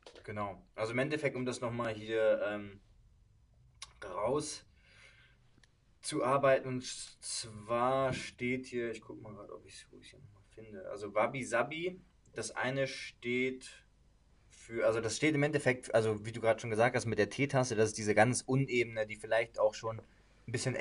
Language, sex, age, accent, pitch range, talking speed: German, male, 20-39, German, 105-125 Hz, 160 wpm